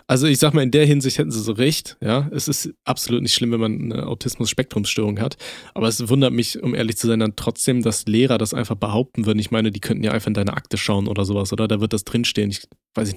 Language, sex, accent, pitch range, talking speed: German, male, German, 110-140 Hz, 260 wpm